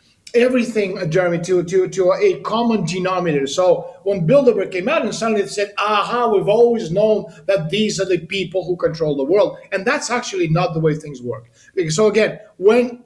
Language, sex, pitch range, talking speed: English, male, 175-230 Hz, 190 wpm